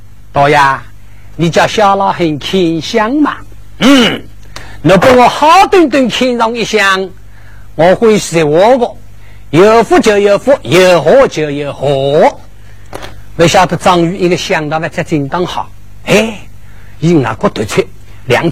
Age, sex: 60-79, male